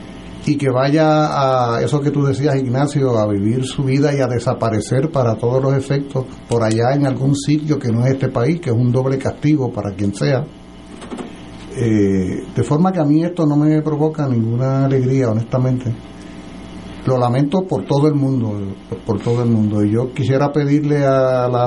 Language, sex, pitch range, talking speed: Spanish, male, 115-150 Hz, 185 wpm